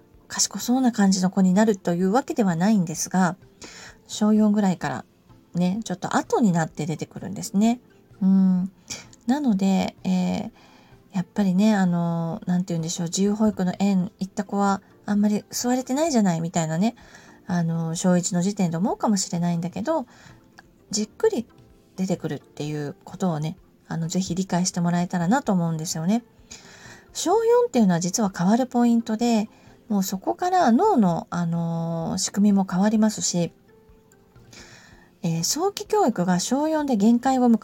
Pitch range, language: 175-225 Hz, Japanese